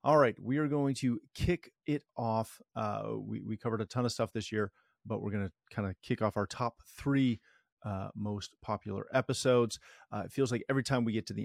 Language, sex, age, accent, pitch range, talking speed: English, male, 30-49, American, 100-130 Hz, 230 wpm